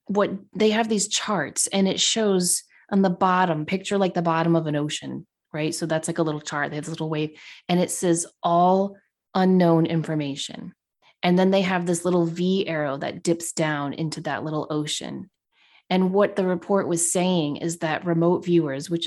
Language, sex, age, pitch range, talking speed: English, female, 30-49, 160-190 Hz, 195 wpm